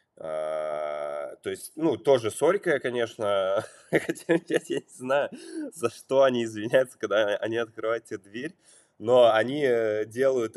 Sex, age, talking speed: male, 20-39, 130 wpm